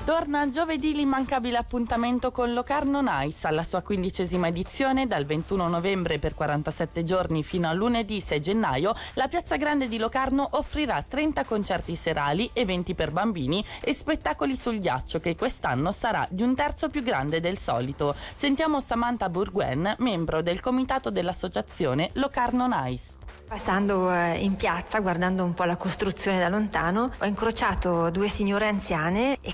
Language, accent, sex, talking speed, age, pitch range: Italian, native, female, 150 wpm, 20-39, 180-245 Hz